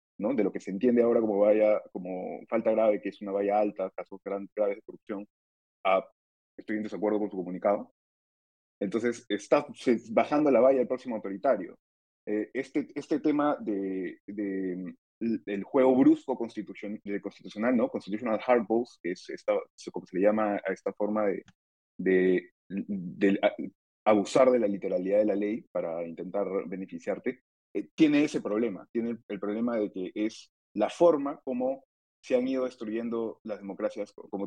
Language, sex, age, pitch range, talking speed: Spanish, male, 30-49, 100-135 Hz, 175 wpm